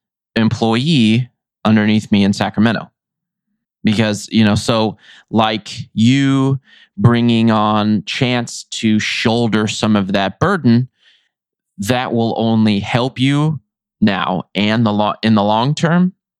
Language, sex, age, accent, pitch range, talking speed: English, male, 20-39, American, 100-120 Hz, 120 wpm